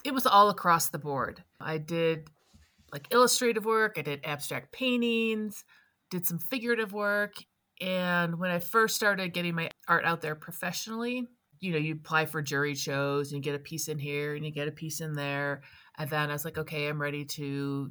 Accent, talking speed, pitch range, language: American, 200 wpm, 140-170 Hz, English